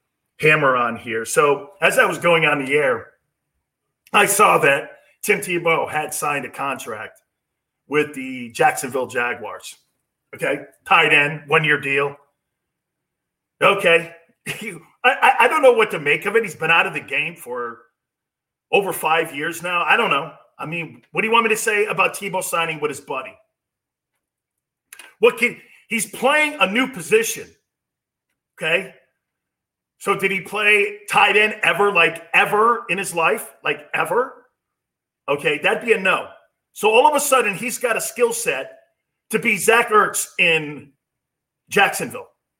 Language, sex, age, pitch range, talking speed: English, male, 40-59, 150-230 Hz, 160 wpm